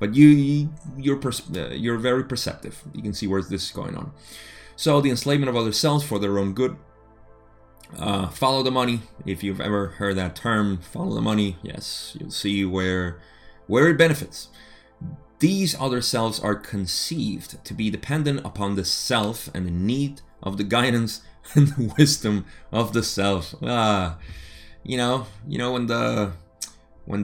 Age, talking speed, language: 30-49, 165 wpm, English